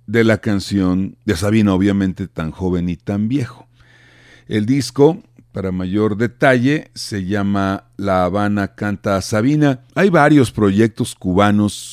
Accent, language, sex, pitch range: Mexican, Spanish, male, 100-125 Hz